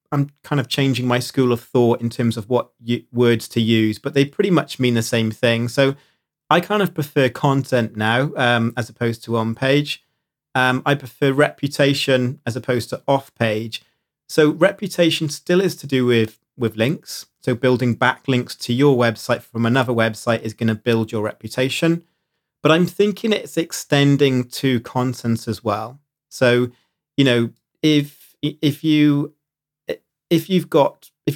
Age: 30-49